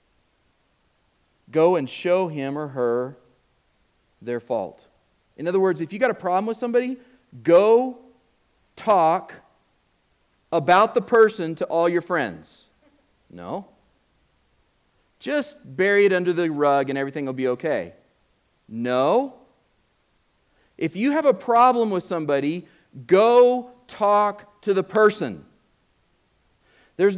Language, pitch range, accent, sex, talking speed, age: English, 160-245 Hz, American, male, 115 wpm, 40-59